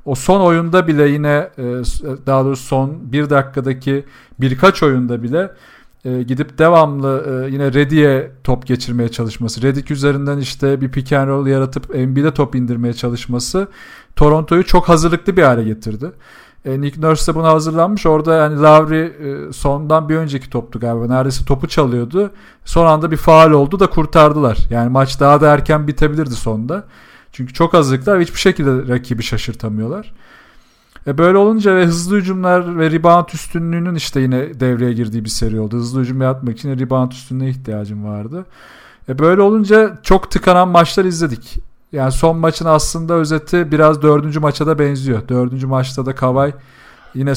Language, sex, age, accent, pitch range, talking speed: Turkish, male, 40-59, native, 130-160 Hz, 150 wpm